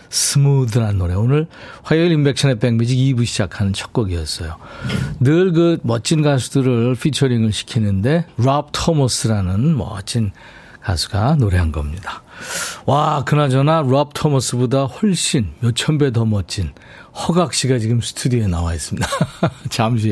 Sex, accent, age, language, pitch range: male, native, 40-59, Korean, 110-155 Hz